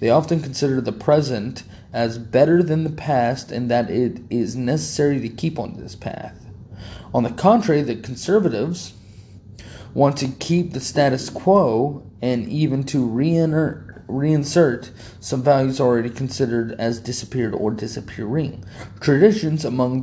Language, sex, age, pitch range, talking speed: English, male, 30-49, 105-140 Hz, 140 wpm